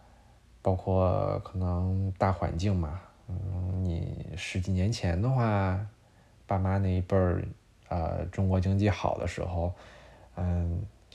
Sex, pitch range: male, 85-100 Hz